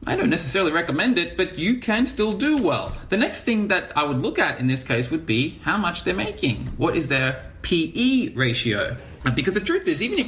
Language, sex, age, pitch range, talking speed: English, male, 30-49, 110-170 Hz, 230 wpm